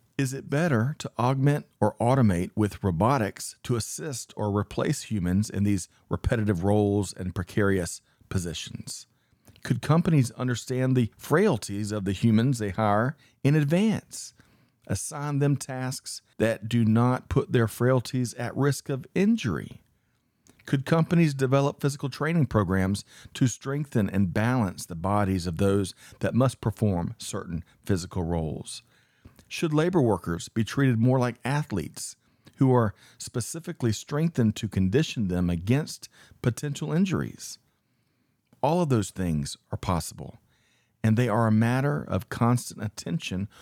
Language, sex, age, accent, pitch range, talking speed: English, male, 40-59, American, 100-135 Hz, 135 wpm